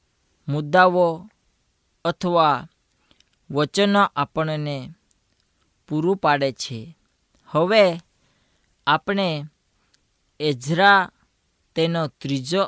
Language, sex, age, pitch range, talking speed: Gujarati, female, 20-39, 130-175 Hz, 45 wpm